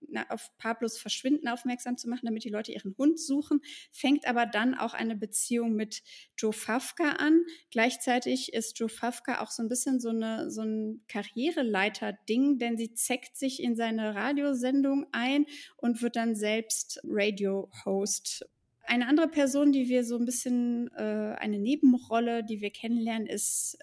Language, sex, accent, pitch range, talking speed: German, female, German, 225-285 Hz, 155 wpm